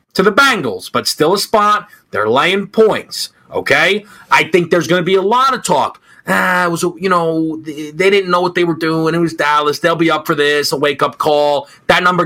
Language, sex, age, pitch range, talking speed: English, male, 30-49, 135-185 Hz, 220 wpm